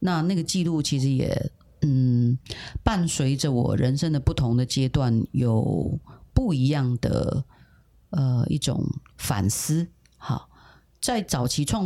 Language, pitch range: Chinese, 130-165 Hz